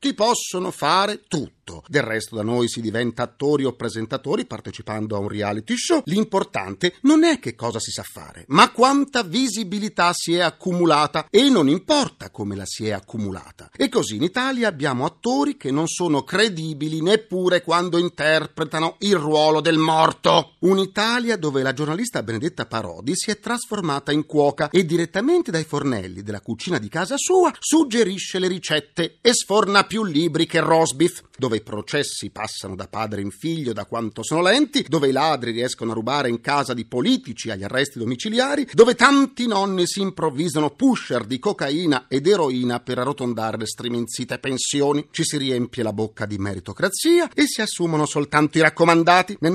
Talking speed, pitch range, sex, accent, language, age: 170 wpm, 120-200 Hz, male, native, Italian, 40-59